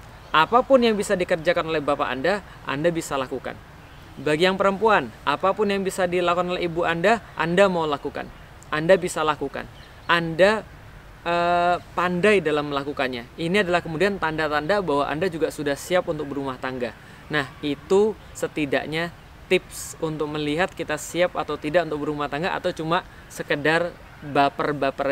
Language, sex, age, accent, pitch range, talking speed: Indonesian, male, 20-39, native, 140-175 Hz, 145 wpm